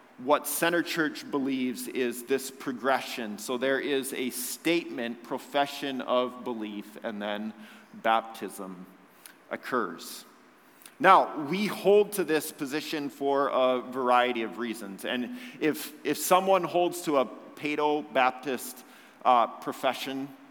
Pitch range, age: 110-140 Hz, 40-59